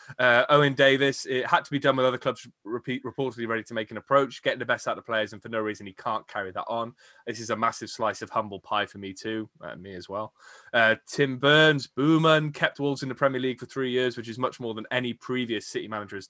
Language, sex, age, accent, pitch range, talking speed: English, male, 20-39, British, 110-135 Hz, 265 wpm